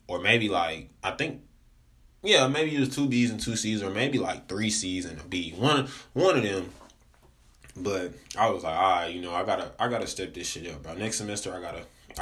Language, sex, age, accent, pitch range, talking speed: English, male, 20-39, American, 85-110 Hz, 230 wpm